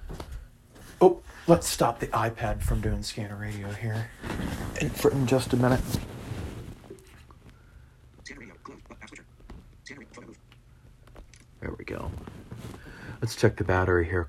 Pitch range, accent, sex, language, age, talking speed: 95-125 Hz, American, male, English, 40-59, 90 wpm